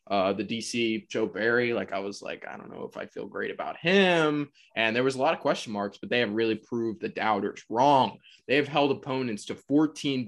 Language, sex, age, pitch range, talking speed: English, male, 20-39, 110-150 Hz, 235 wpm